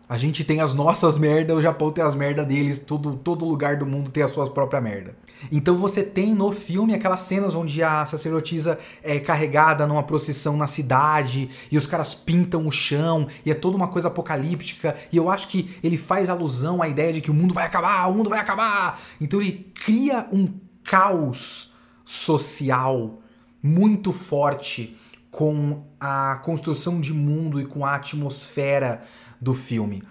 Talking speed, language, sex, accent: 175 wpm, Portuguese, male, Brazilian